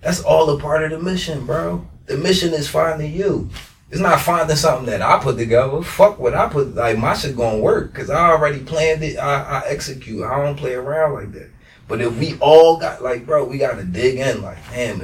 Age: 20-39